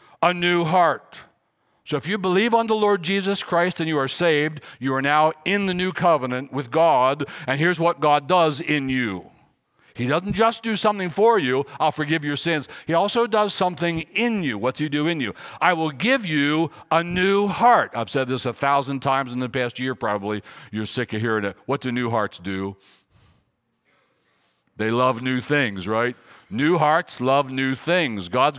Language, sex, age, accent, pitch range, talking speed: English, male, 60-79, American, 130-180 Hz, 195 wpm